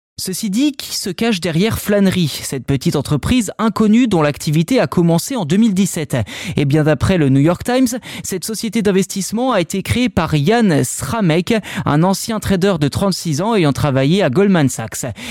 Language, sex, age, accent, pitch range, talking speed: French, male, 20-39, French, 150-210 Hz, 175 wpm